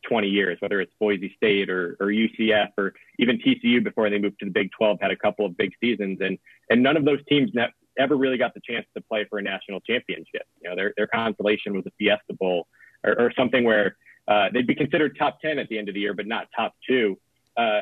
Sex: male